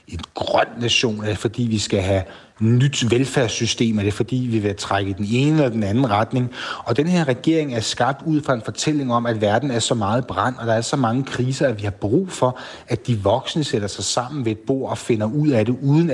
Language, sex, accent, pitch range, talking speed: Danish, male, native, 105-140 Hz, 250 wpm